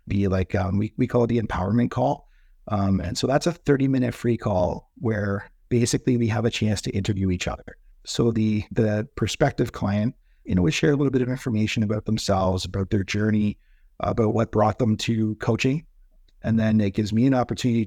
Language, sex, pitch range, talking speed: English, male, 95-115 Hz, 200 wpm